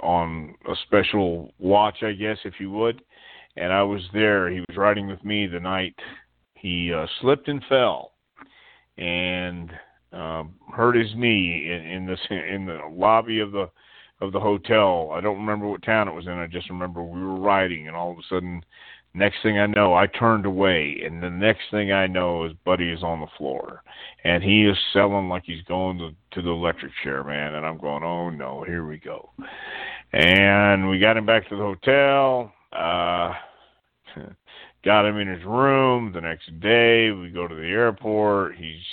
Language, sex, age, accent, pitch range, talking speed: English, male, 50-69, American, 85-105 Hz, 185 wpm